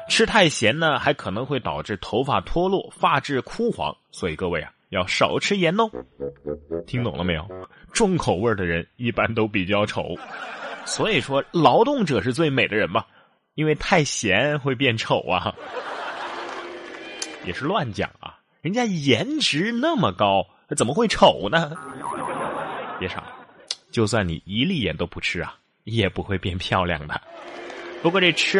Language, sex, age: Chinese, male, 20-39